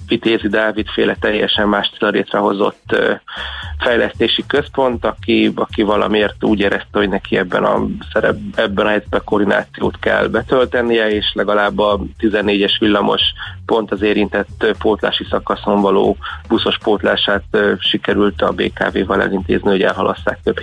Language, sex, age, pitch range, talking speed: Hungarian, male, 30-49, 100-115 Hz, 125 wpm